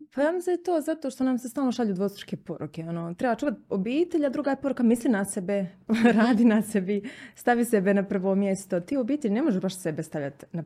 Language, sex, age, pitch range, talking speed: Croatian, female, 20-39, 180-240 Hz, 205 wpm